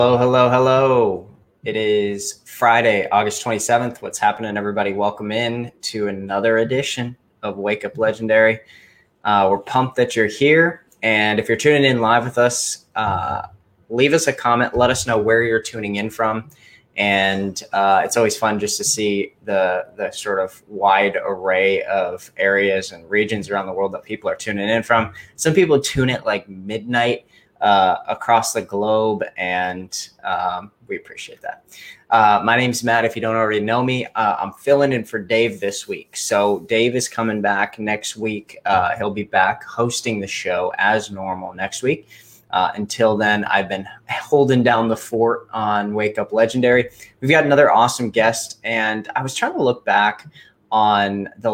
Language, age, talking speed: English, 10-29, 175 wpm